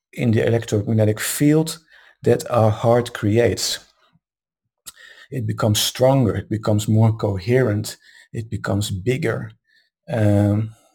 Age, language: 50-69, English